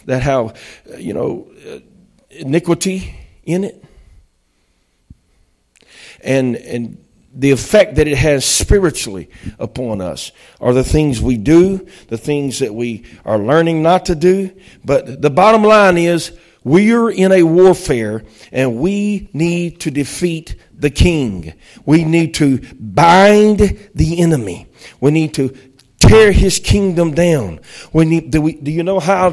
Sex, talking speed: male, 140 wpm